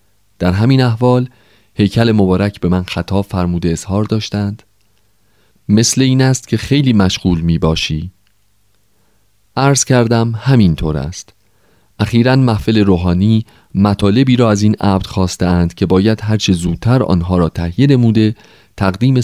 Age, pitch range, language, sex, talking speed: 40-59, 95-115 Hz, Persian, male, 130 wpm